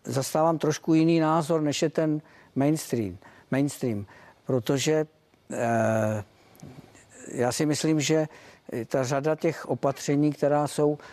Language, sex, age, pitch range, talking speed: Czech, male, 50-69, 125-145 Hz, 115 wpm